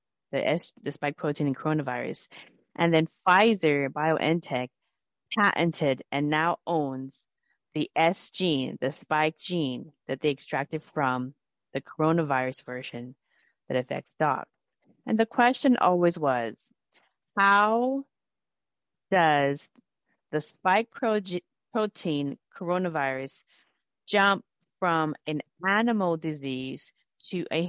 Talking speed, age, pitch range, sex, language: 110 wpm, 30-49, 145-185 Hz, female, English